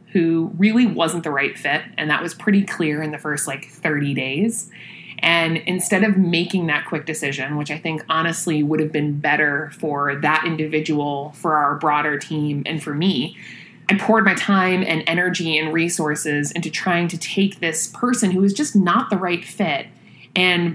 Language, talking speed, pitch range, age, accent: English, 185 wpm, 155-185 Hz, 30-49, American